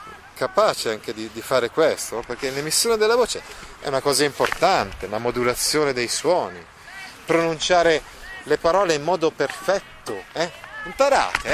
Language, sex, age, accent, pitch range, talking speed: Italian, male, 30-49, native, 120-185 Hz, 135 wpm